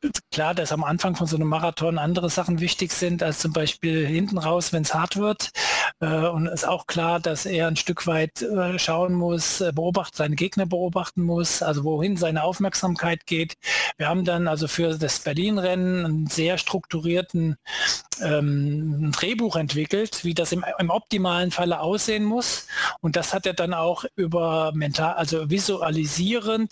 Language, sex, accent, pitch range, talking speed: German, male, German, 165-195 Hz, 165 wpm